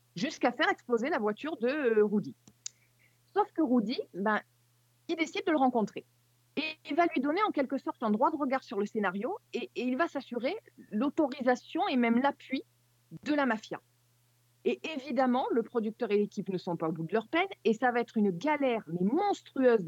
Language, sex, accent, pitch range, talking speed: French, female, French, 185-265 Hz, 195 wpm